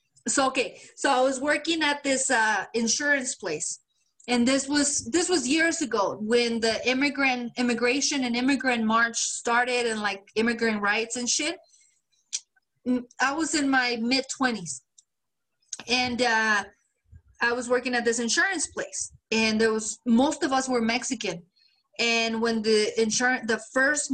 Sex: female